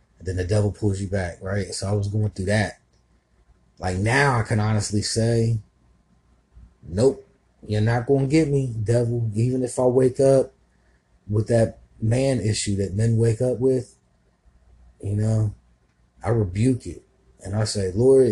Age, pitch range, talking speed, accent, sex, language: 30-49, 95-120 Hz, 165 wpm, American, male, English